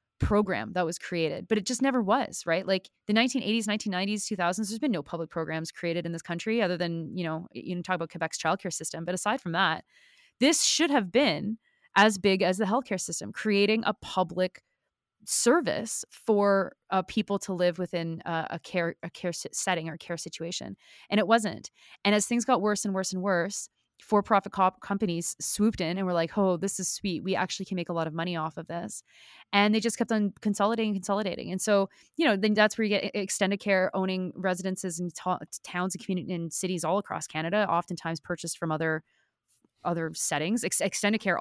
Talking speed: 205 wpm